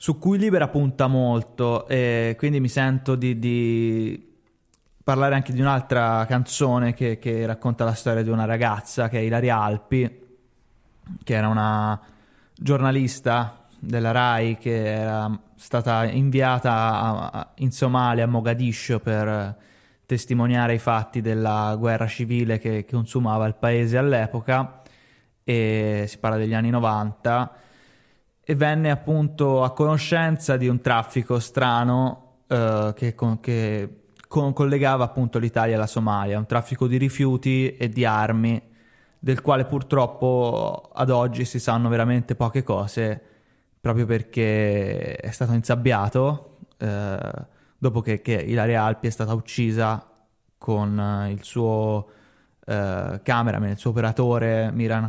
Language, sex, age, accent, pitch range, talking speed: Italian, male, 20-39, native, 110-130 Hz, 135 wpm